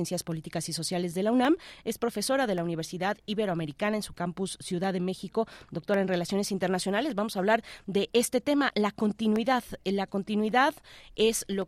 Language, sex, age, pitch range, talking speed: Spanish, female, 30-49, 180-220 Hz, 175 wpm